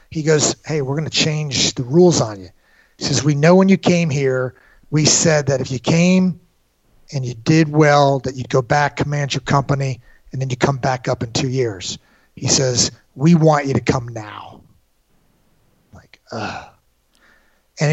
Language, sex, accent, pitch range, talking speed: English, male, American, 135-160 Hz, 185 wpm